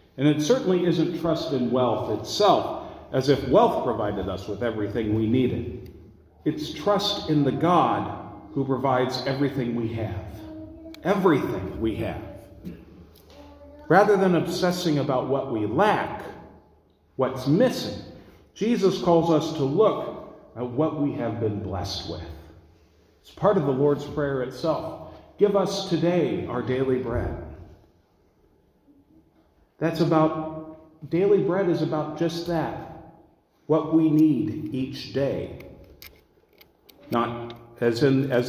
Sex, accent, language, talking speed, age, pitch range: male, American, English, 125 wpm, 50-69, 105-155 Hz